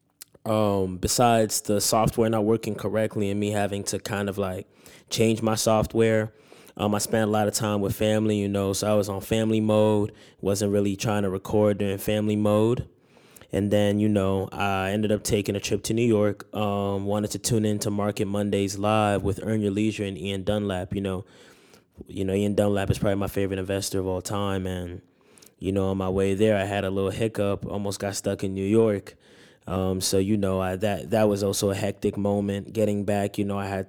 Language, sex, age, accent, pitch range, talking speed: English, male, 10-29, American, 100-110 Hz, 210 wpm